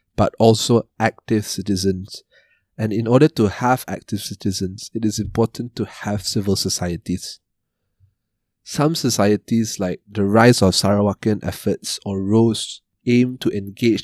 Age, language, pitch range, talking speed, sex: 30-49, English, 100-120 Hz, 130 wpm, male